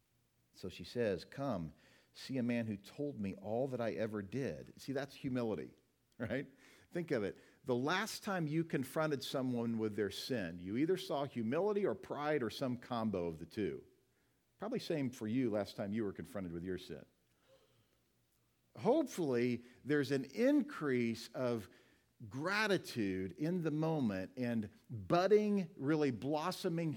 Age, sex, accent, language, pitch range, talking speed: 50-69, male, American, English, 115-155 Hz, 150 wpm